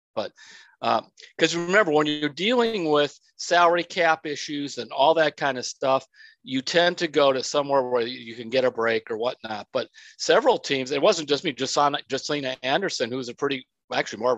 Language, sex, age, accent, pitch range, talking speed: English, male, 50-69, American, 120-165 Hz, 195 wpm